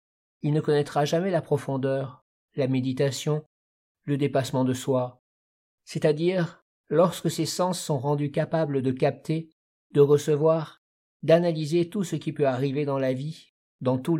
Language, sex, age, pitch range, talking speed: French, male, 50-69, 130-160 Hz, 145 wpm